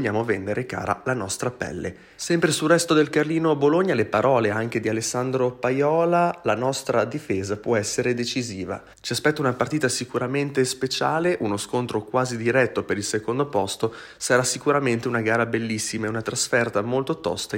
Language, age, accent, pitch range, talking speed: Italian, 30-49, native, 110-140 Hz, 160 wpm